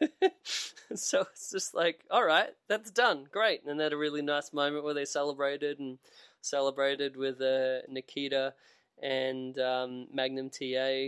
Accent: Australian